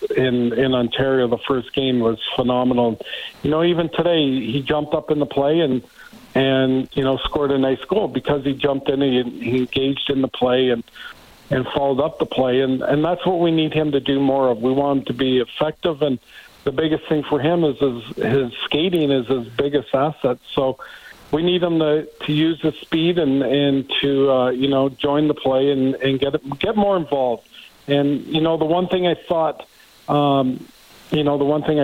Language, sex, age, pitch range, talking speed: English, male, 50-69, 130-150 Hz, 210 wpm